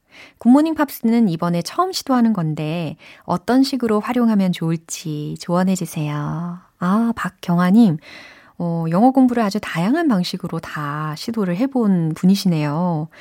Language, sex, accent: Korean, female, native